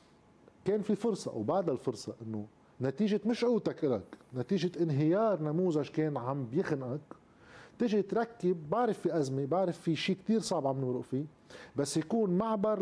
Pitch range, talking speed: 135-185 Hz, 150 wpm